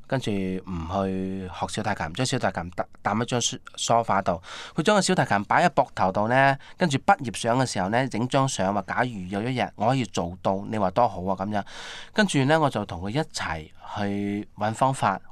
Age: 20-39